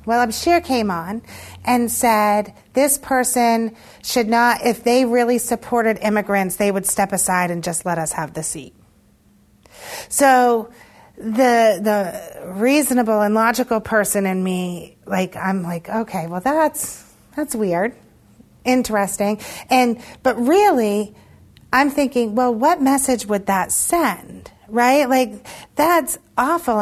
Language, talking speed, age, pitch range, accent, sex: English, 135 wpm, 40-59, 205-265 Hz, American, female